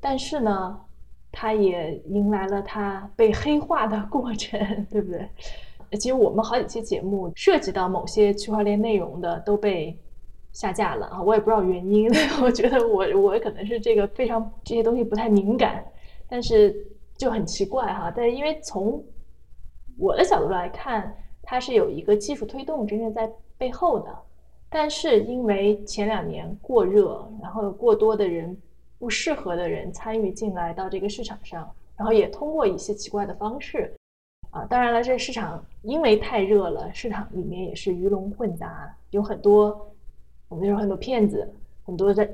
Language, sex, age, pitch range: Chinese, female, 20-39, 200-245 Hz